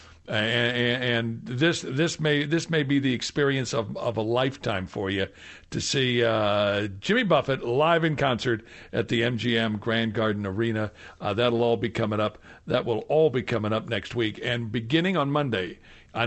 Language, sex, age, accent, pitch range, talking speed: English, male, 60-79, American, 110-150 Hz, 180 wpm